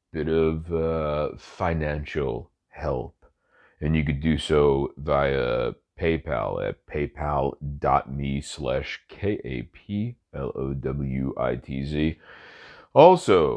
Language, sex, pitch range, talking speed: English, male, 75-90 Hz, 75 wpm